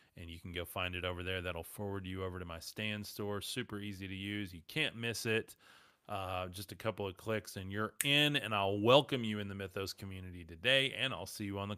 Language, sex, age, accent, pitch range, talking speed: English, male, 30-49, American, 85-105 Hz, 245 wpm